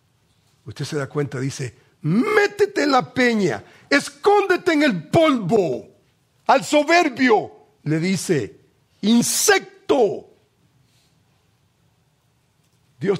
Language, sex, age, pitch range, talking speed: English, male, 50-69, 125-150 Hz, 85 wpm